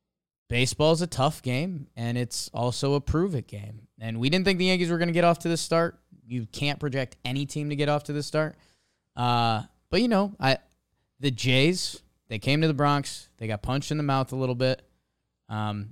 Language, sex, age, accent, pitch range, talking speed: English, male, 20-39, American, 115-150 Hz, 220 wpm